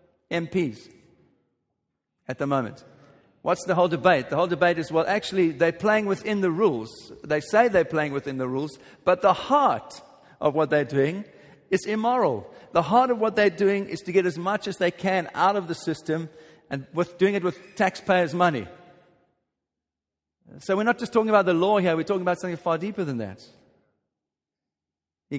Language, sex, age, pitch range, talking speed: English, male, 50-69, 150-190 Hz, 180 wpm